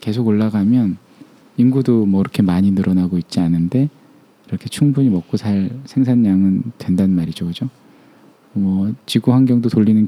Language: Korean